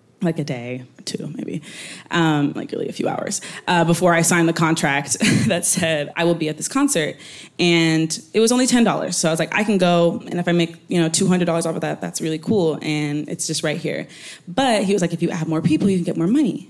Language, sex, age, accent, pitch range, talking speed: English, female, 20-39, American, 155-185 Hz, 260 wpm